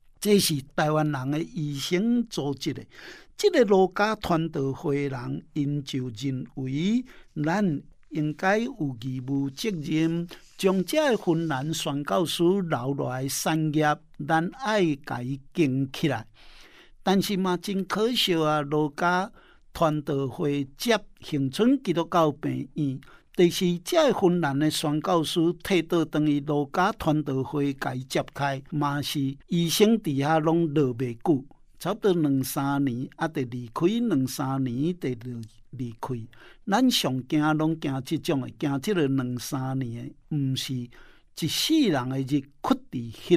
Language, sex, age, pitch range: Chinese, male, 60-79, 135-175 Hz